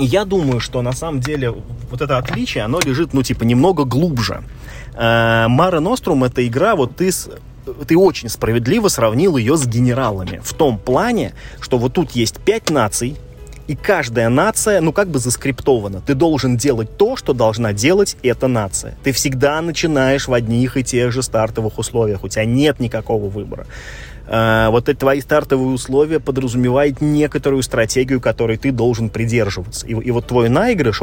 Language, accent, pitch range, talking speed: Russian, native, 115-145 Hz, 165 wpm